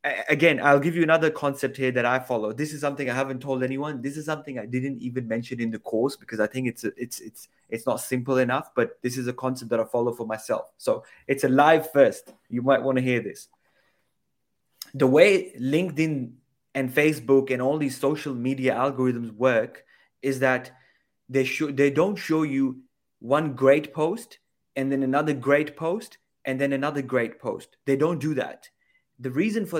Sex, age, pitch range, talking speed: male, 20-39, 125-150 Hz, 200 wpm